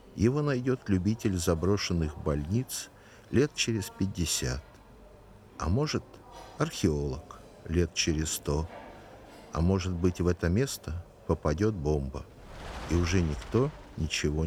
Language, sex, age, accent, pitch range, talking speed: Russian, male, 60-79, native, 80-110 Hz, 110 wpm